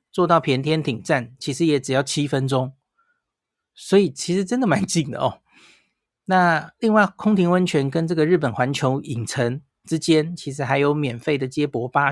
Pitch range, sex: 135-165 Hz, male